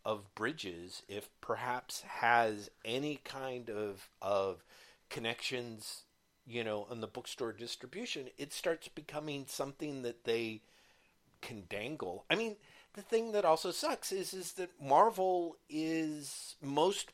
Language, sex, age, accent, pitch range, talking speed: English, male, 50-69, American, 120-175 Hz, 130 wpm